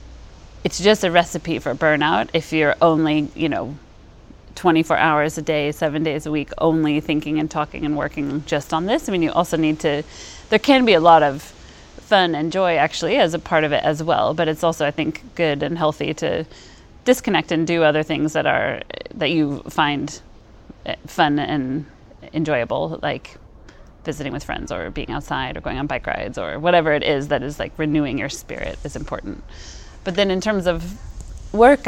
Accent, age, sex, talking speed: American, 30-49, female, 195 wpm